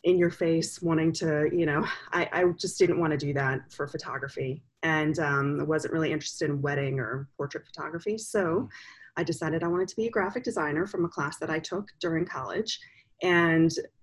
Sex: female